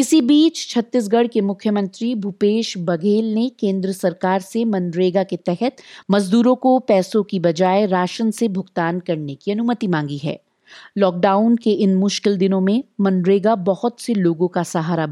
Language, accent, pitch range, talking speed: Hindi, native, 180-230 Hz, 155 wpm